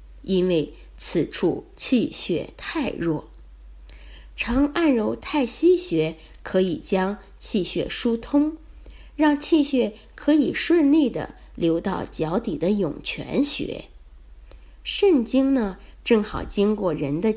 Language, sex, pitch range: Chinese, female, 165-270 Hz